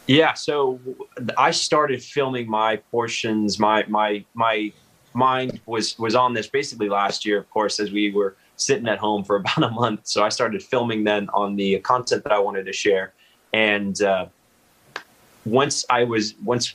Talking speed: 175 wpm